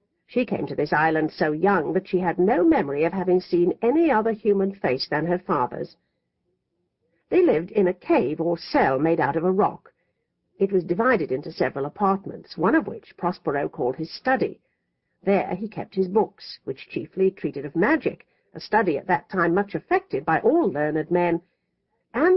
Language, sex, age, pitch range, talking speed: English, female, 60-79, 165-220 Hz, 185 wpm